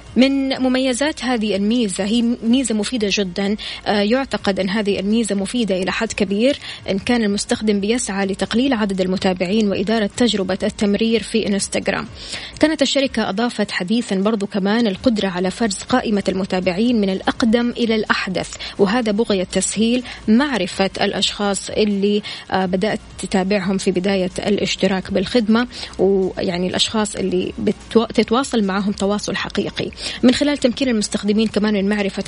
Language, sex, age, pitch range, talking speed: Arabic, female, 20-39, 200-240 Hz, 130 wpm